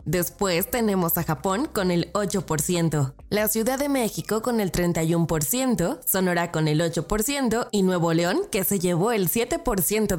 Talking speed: 155 wpm